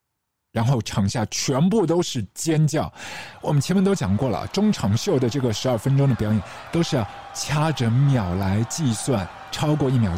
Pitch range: 105-145 Hz